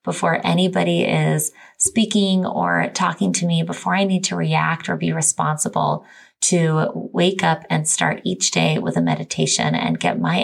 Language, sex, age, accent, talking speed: English, female, 20-39, American, 165 wpm